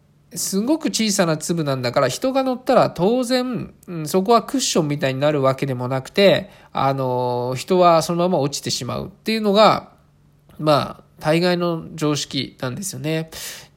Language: Japanese